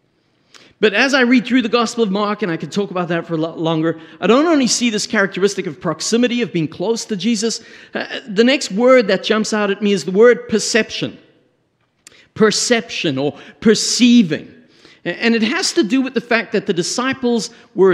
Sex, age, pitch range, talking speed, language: male, 50-69, 165-225 Hz, 195 wpm, English